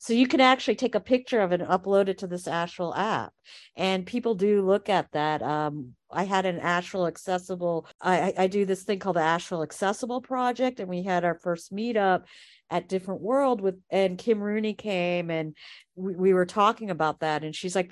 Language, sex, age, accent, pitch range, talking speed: English, female, 50-69, American, 180-240 Hz, 210 wpm